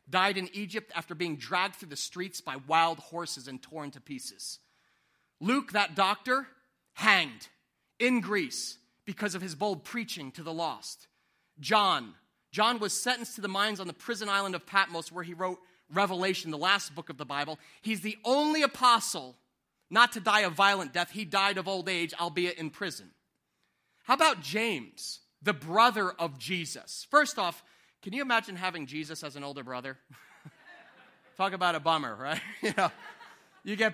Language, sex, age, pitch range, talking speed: English, male, 30-49, 170-240 Hz, 175 wpm